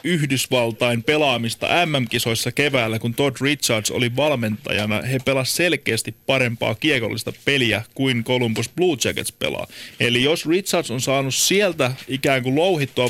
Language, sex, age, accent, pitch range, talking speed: Finnish, male, 30-49, native, 120-145 Hz, 135 wpm